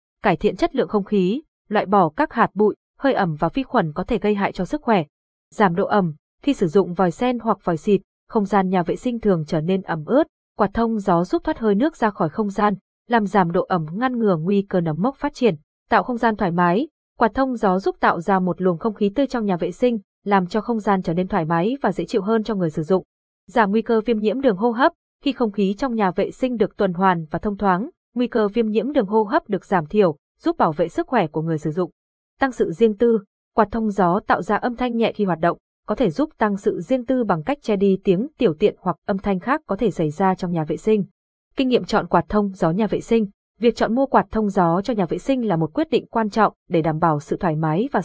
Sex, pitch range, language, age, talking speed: female, 185-235 Hz, Vietnamese, 20-39, 270 wpm